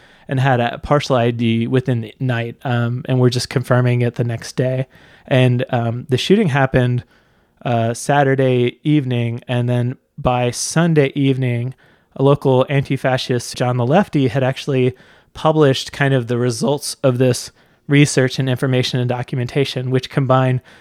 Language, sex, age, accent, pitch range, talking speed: English, male, 30-49, American, 125-145 Hz, 155 wpm